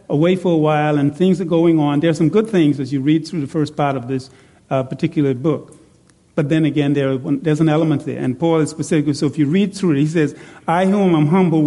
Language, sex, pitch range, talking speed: English, male, 145-170 Hz, 265 wpm